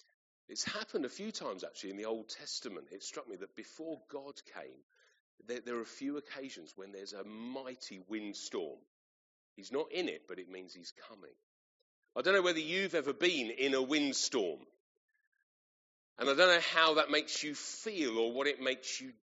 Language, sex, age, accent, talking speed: English, male, 40-59, British, 190 wpm